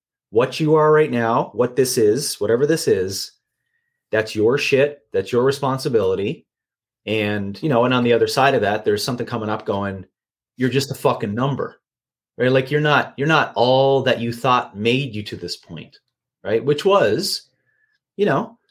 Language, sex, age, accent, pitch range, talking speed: English, male, 30-49, American, 100-140 Hz, 185 wpm